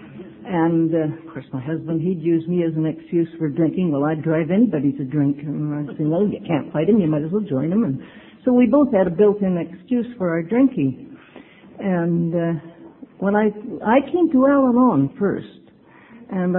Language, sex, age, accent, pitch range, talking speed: English, female, 60-79, American, 160-215 Hz, 200 wpm